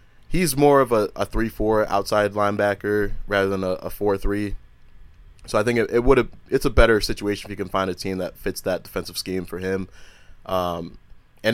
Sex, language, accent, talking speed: male, English, American, 200 wpm